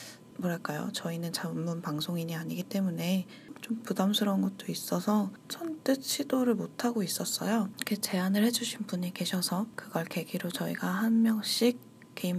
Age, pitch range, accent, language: 20-39, 185-235 Hz, native, Korean